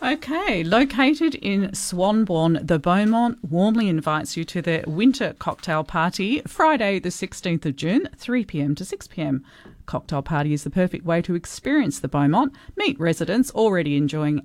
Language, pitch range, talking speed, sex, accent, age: English, 150-195 Hz, 150 wpm, female, Australian, 40-59